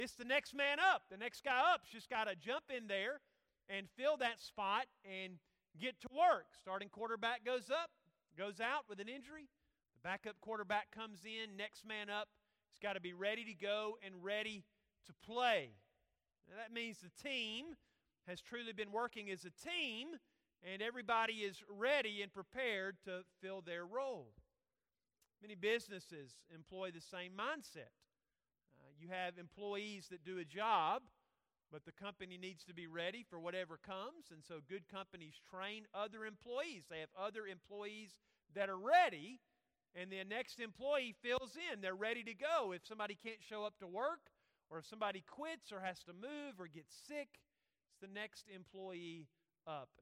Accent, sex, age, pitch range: American, male, 40-59, 185-240 Hz